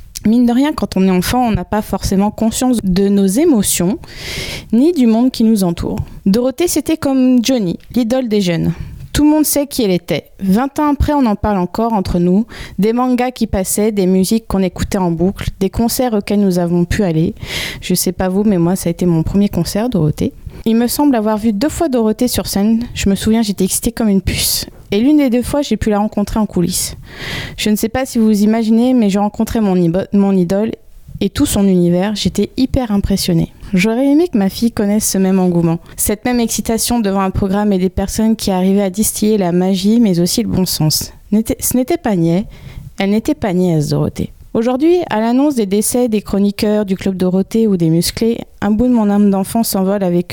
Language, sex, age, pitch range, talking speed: French, female, 20-39, 185-235 Hz, 220 wpm